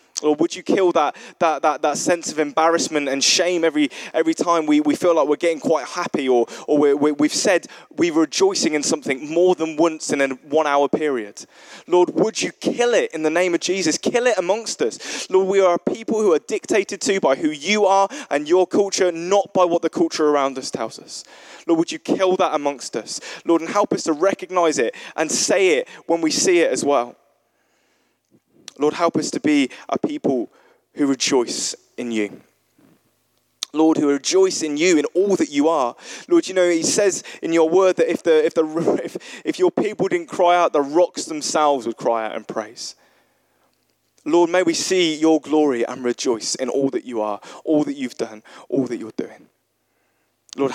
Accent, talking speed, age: British, 205 wpm, 20-39